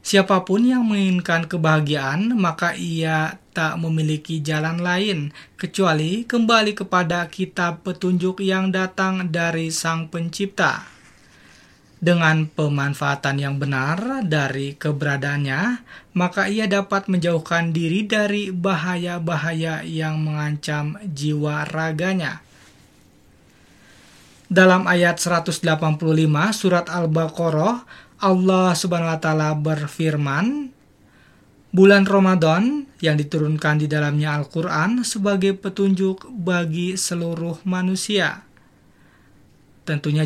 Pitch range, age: 155-190 Hz, 20-39